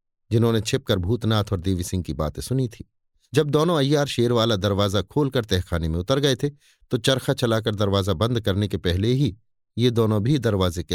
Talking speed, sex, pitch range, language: 190 wpm, male, 100-140 Hz, Hindi